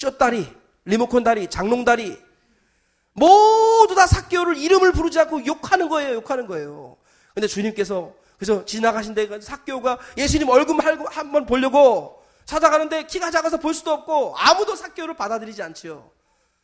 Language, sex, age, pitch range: Korean, male, 40-59, 170-265 Hz